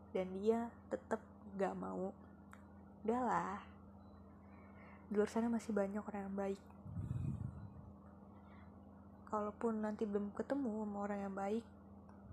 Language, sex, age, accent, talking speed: Indonesian, female, 20-39, native, 105 wpm